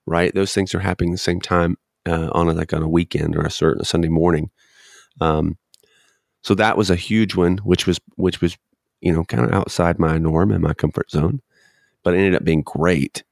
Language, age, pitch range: English, 30-49, 85-100 Hz